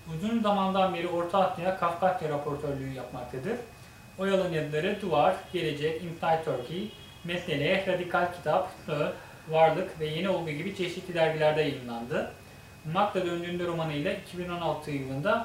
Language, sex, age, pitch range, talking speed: Turkish, male, 30-49, 145-185 Hz, 115 wpm